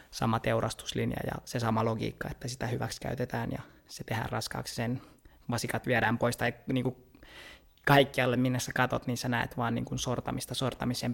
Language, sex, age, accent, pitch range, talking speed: Finnish, male, 20-39, native, 105-125 Hz, 165 wpm